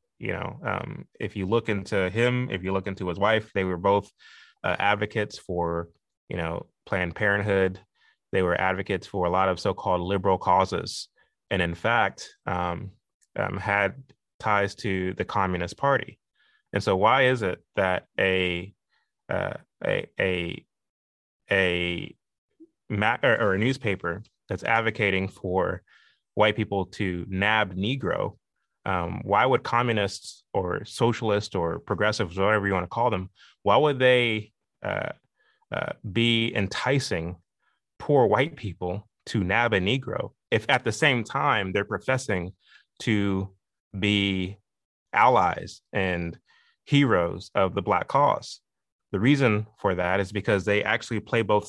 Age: 20-39